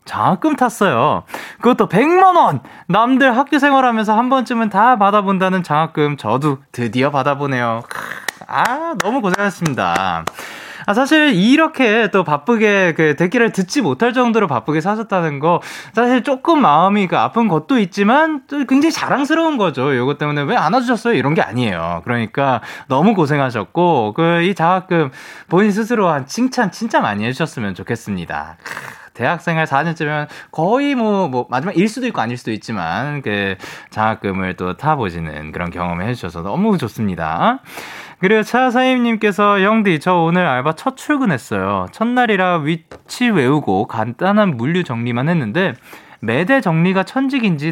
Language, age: Korean, 20-39